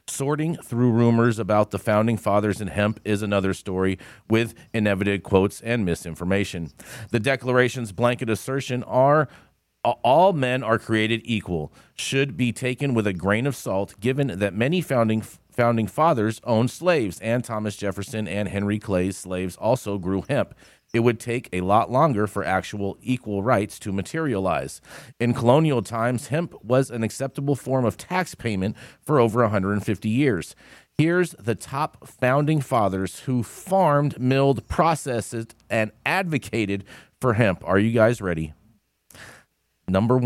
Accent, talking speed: American, 145 wpm